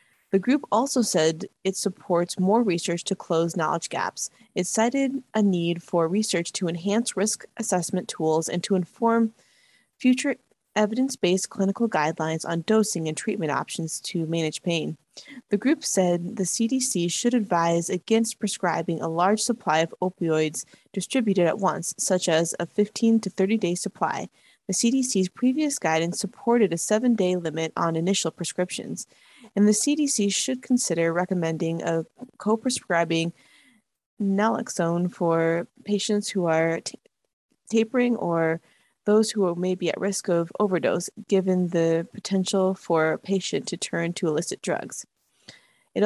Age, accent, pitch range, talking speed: 20-39, American, 170-220 Hz, 145 wpm